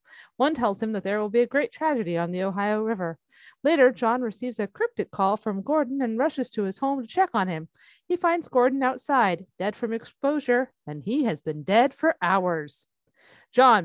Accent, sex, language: American, female, English